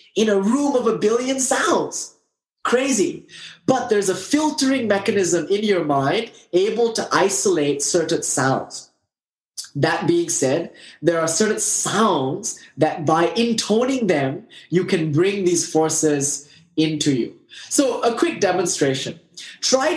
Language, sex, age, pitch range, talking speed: English, male, 20-39, 145-230 Hz, 130 wpm